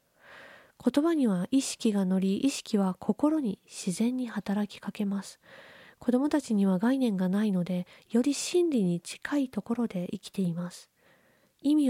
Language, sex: Japanese, female